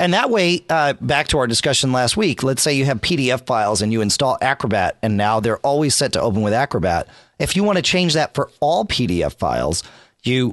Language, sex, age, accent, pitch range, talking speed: English, male, 40-59, American, 115-155 Hz, 230 wpm